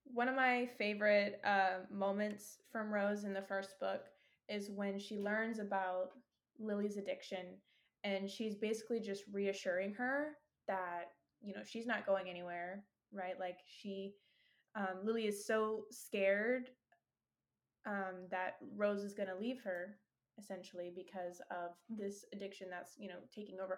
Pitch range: 190-215 Hz